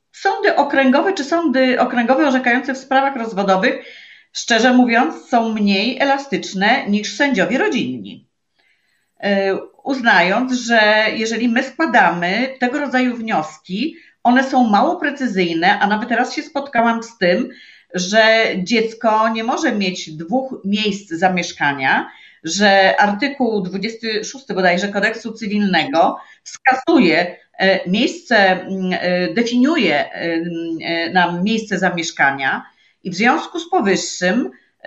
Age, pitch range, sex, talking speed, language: 40-59, 195-260 Hz, female, 105 wpm, Polish